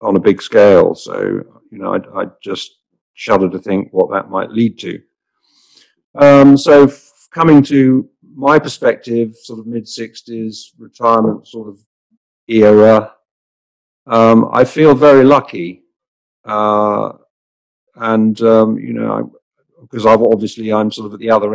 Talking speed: 140 wpm